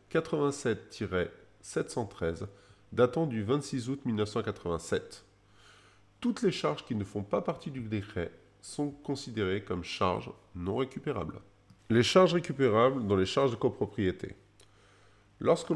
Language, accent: French, French